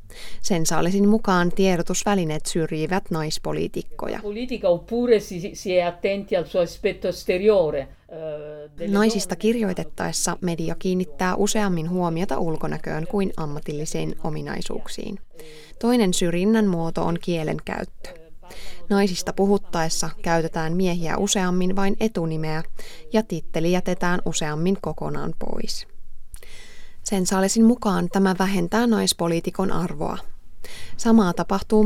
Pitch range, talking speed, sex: 170-205 Hz, 80 wpm, female